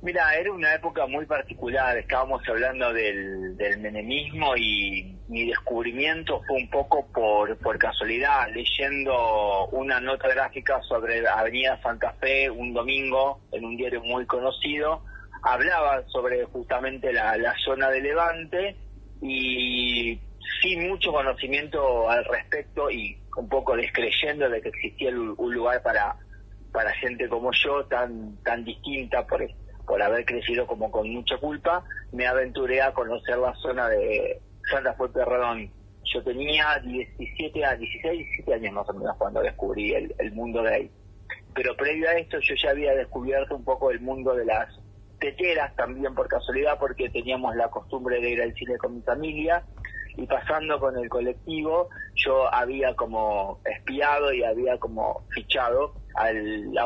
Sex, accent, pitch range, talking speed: male, Argentinian, 115-150 Hz, 155 wpm